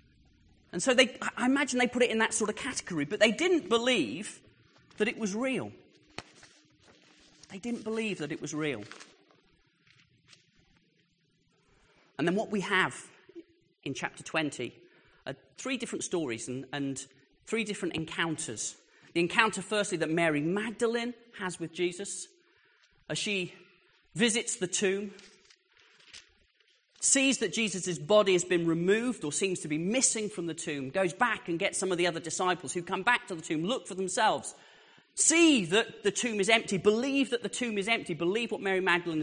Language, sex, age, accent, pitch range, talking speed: English, male, 30-49, British, 150-220 Hz, 165 wpm